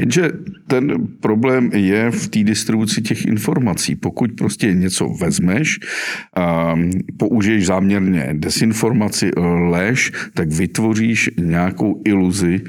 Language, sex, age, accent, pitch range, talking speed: Czech, male, 50-69, native, 90-110 Hz, 105 wpm